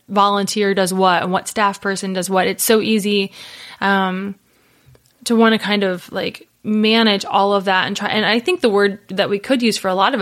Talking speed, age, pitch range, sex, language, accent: 225 wpm, 20-39, 190-215 Hz, female, English, American